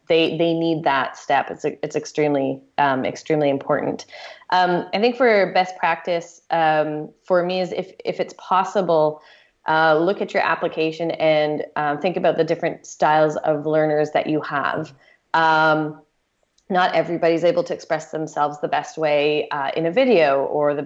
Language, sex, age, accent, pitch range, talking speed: English, female, 20-39, American, 150-175 Hz, 170 wpm